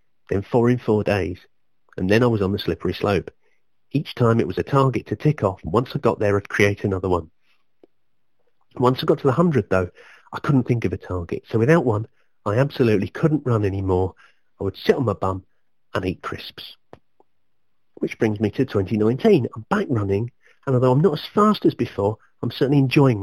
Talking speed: 205 wpm